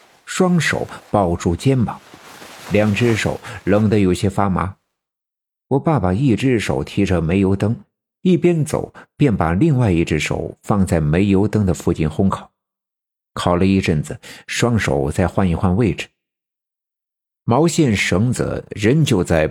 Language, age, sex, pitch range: Chinese, 50-69, male, 90-135 Hz